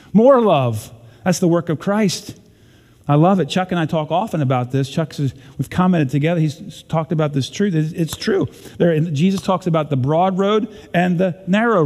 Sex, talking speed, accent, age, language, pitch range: male, 195 wpm, American, 40-59, English, 130-185 Hz